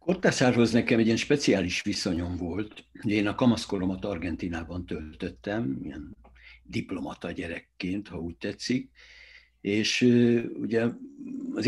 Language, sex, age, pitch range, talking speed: Hungarian, male, 60-79, 90-110 Hz, 110 wpm